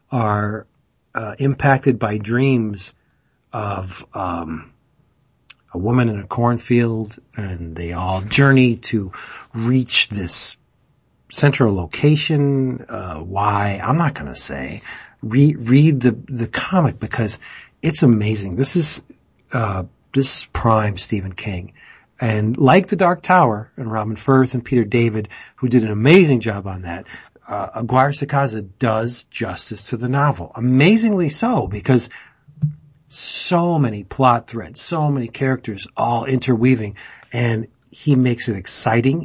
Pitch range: 110-140 Hz